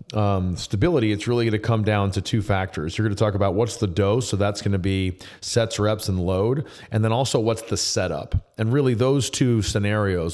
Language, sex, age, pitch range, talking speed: English, male, 30-49, 95-115 Hz, 225 wpm